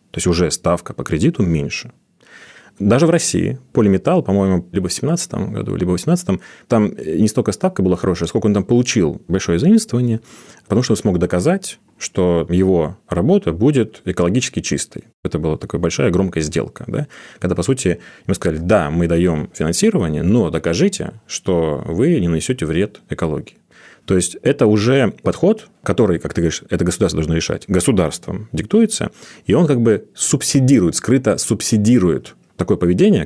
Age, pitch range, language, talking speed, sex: 30-49, 85-115 Hz, Russian, 160 wpm, male